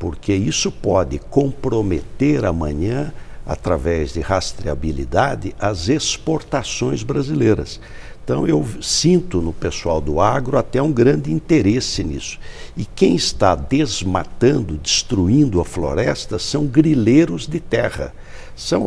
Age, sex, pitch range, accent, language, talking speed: 60-79, male, 90-130 Hz, Brazilian, English, 110 wpm